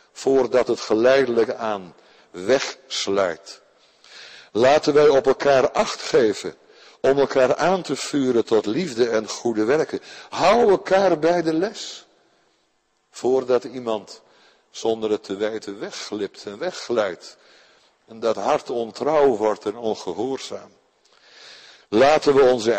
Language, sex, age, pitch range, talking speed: Dutch, male, 60-79, 110-160 Hz, 120 wpm